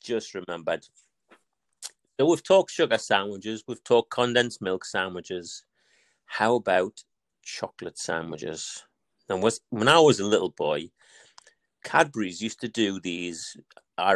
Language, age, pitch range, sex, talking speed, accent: English, 40-59, 95-125 Hz, male, 125 wpm, British